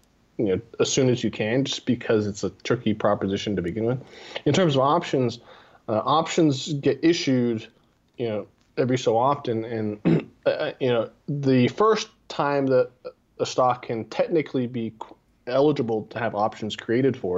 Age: 20-39